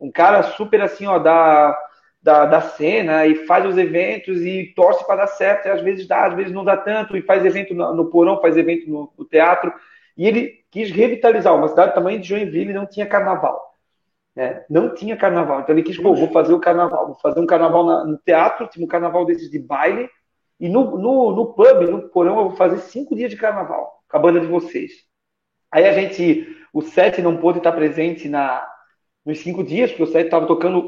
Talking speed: 220 wpm